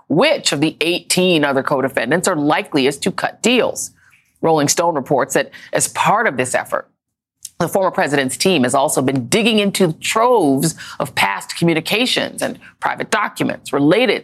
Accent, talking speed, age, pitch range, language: American, 155 wpm, 30-49, 150-205 Hz, English